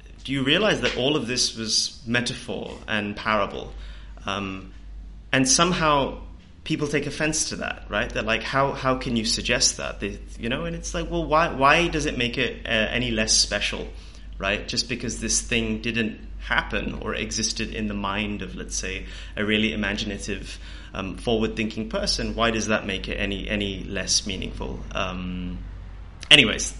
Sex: male